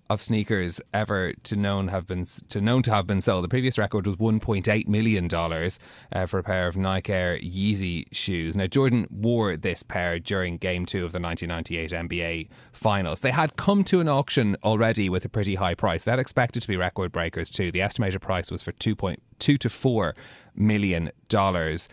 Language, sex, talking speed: English, male, 195 wpm